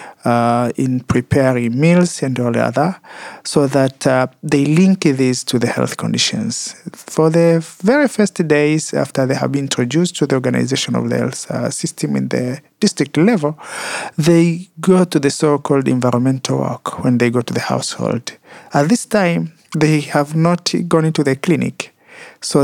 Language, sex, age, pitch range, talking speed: Swedish, male, 50-69, 130-175 Hz, 165 wpm